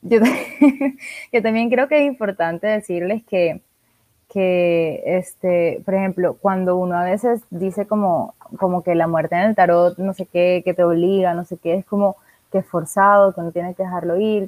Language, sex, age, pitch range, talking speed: Spanish, female, 20-39, 180-225 Hz, 195 wpm